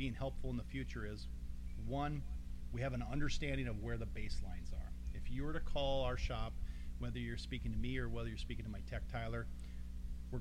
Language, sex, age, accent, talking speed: English, male, 40-59, American, 215 wpm